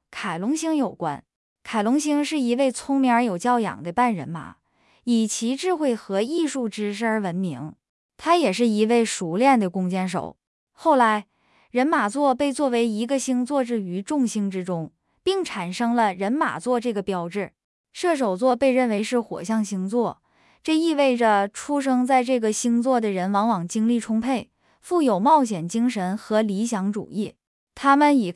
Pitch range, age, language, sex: 205-275 Hz, 10-29, English, female